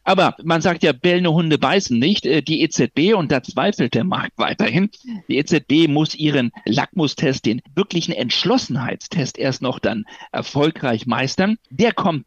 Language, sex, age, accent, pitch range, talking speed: German, male, 60-79, German, 125-170 Hz, 150 wpm